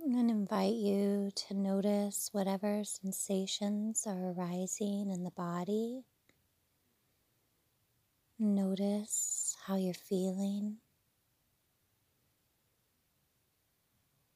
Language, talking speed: English, 75 wpm